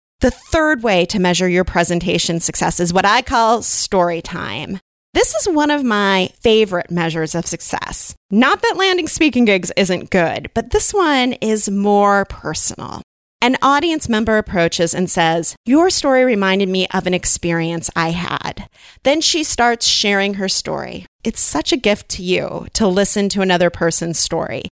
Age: 30-49